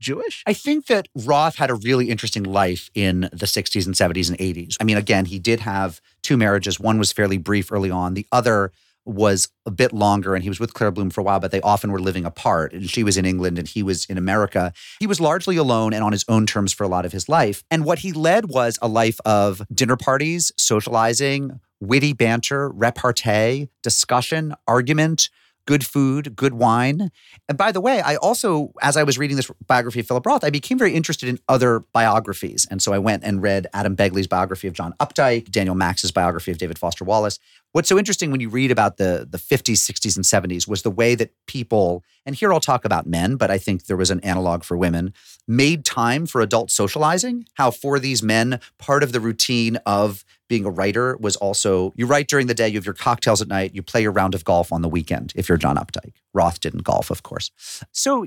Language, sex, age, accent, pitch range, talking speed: English, male, 30-49, American, 95-140 Hz, 225 wpm